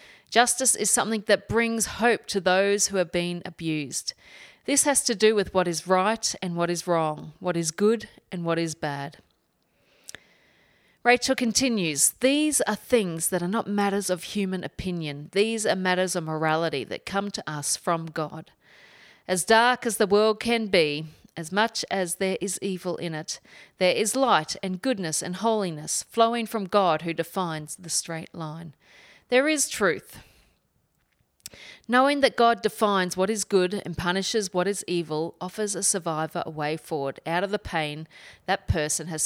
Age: 40-59